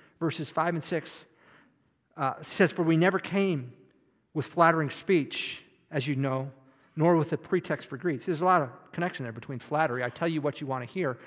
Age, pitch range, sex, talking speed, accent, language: 50-69, 135-170 Hz, male, 195 wpm, American, English